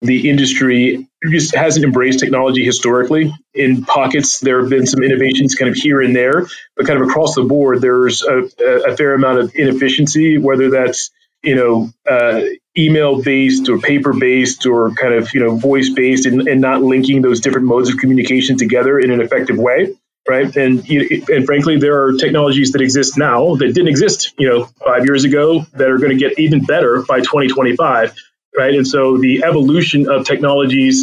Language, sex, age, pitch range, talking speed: English, male, 30-49, 130-145 Hz, 180 wpm